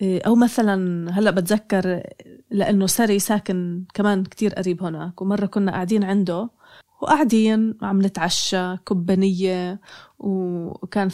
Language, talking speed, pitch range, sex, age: Arabic, 110 wpm, 185-225 Hz, female, 20-39